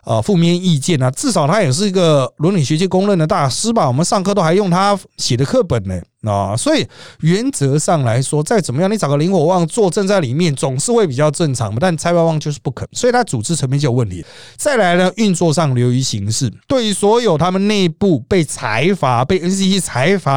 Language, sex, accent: Chinese, male, native